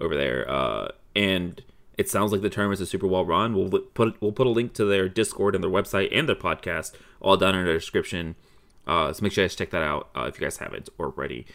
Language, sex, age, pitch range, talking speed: English, male, 30-49, 95-115 Hz, 255 wpm